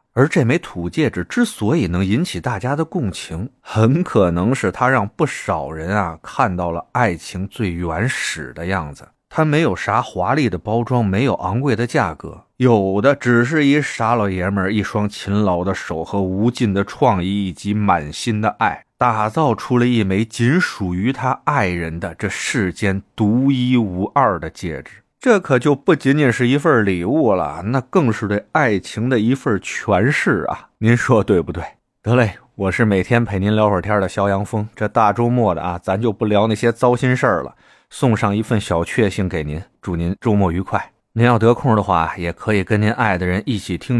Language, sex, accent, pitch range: Chinese, male, native, 90-120 Hz